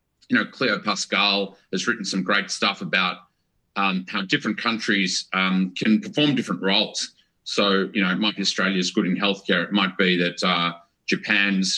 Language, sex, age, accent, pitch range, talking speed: English, male, 40-59, Australian, 95-115 Hz, 180 wpm